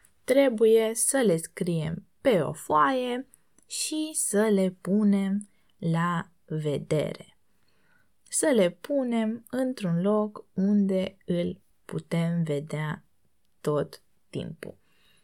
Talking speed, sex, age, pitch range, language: 95 wpm, female, 20-39, 165-225 Hz, Romanian